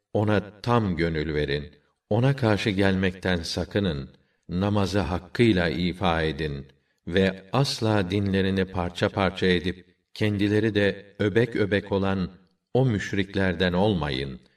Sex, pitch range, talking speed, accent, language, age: male, 90-105 Hz, 105 wpm, native, Turkish, 50-69